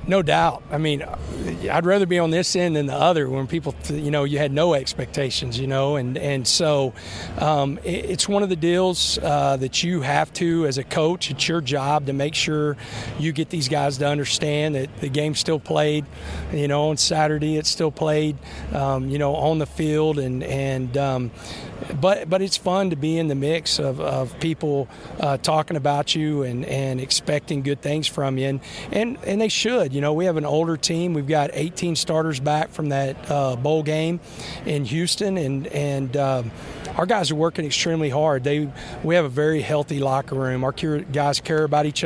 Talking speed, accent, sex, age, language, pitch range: 205 wpm, American, male, 40-59, English, 135-160 Hz